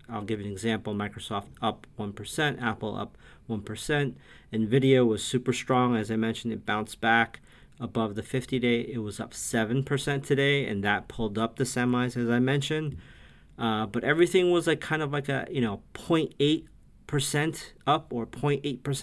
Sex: male